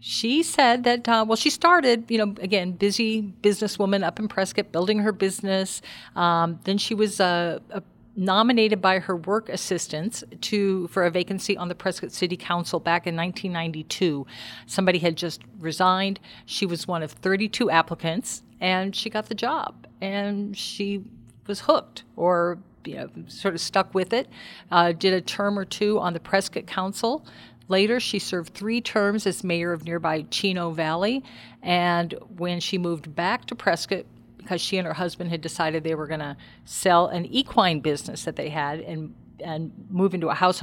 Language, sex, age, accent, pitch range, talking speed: English, female, 50-69, American, 170-210 Hz, 175 wpm